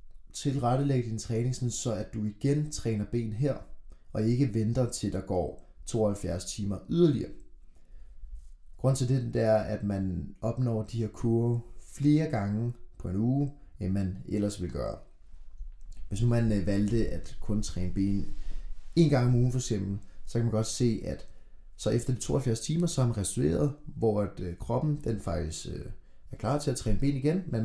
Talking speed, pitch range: 175 wpm, 95-125 Hz